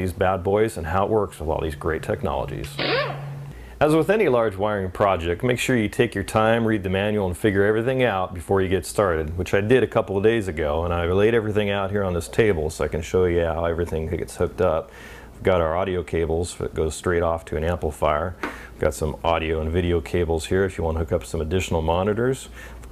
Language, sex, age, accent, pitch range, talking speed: English, male, 40-59, American, 85-105 Hz, 240 wpm